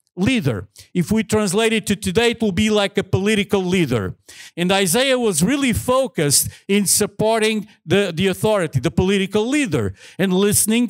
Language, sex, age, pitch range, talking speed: English, male, 50-69, 180-225 Hz, 160 wpm